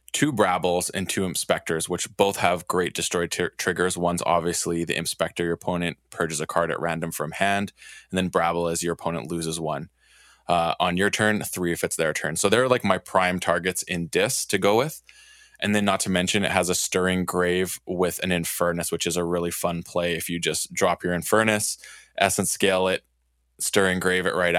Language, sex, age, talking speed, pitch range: English, male, 20-39, 210 wpm, 85-95 Hz